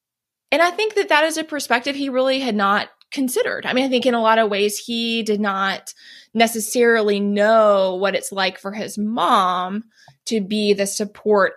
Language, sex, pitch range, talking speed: English, female, 200-245 Hz, 190 wpm